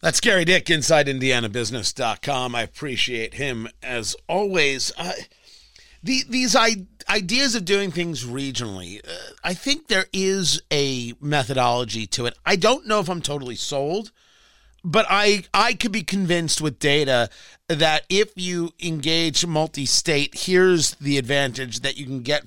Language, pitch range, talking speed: English, 135-200 Hz, 145 wpm